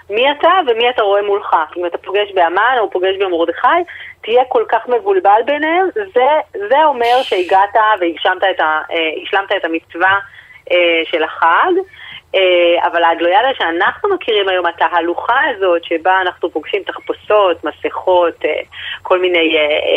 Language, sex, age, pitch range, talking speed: Hebrew, female, 30-49, 165-245 Hz, 145 wpm